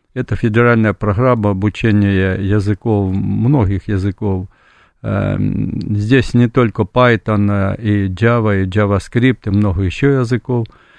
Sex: male